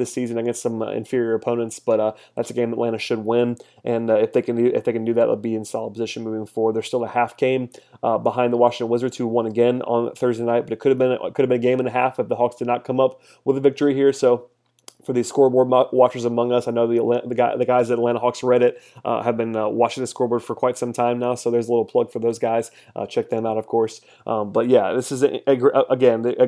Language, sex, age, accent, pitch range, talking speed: English, male, 30-49, American, 120-130 Hz, 285 wpm